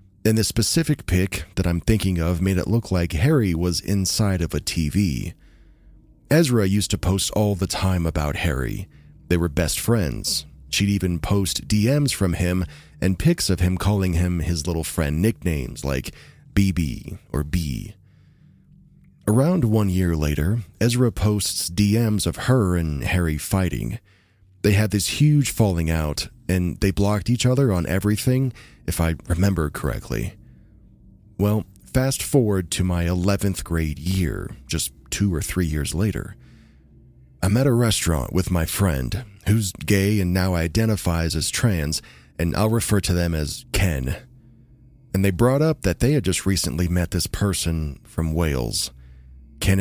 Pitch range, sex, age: 85-105 Hz, male, 30-49